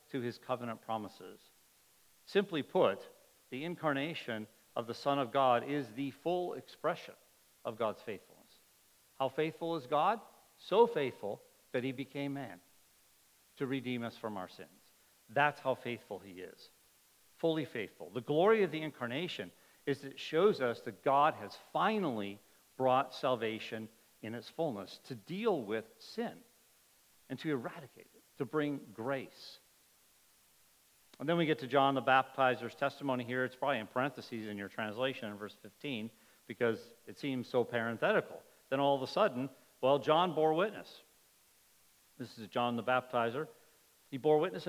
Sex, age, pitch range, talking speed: male, 50-69, 120-150 Hz, 155 wpm